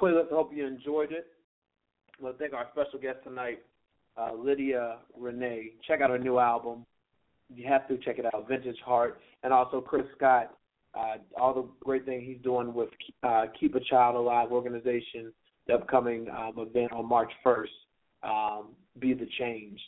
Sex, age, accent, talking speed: male, 30-49, American, 180 wpm